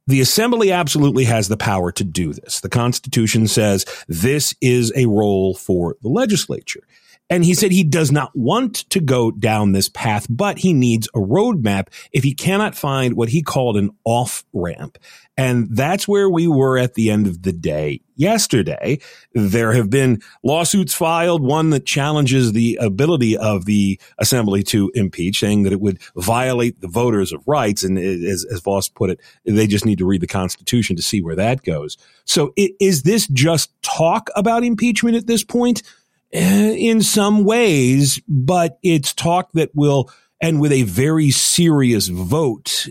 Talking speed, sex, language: 175 wpm, male, English